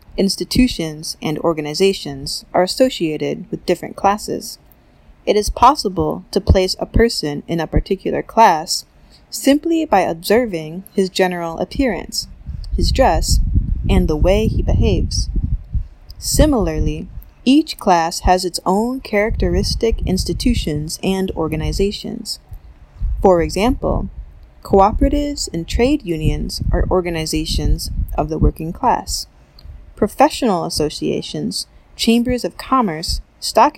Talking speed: 105 wpm